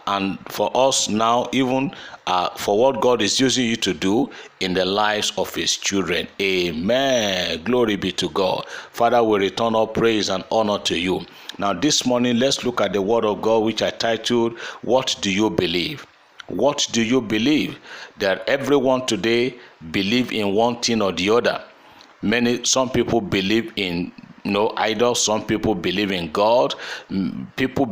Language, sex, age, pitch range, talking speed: English, male, 50-69, 105-130 Hz, 170 wpm